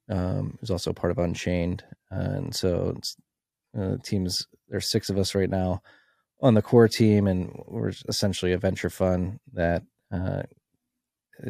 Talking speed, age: 155 wpm, 20-39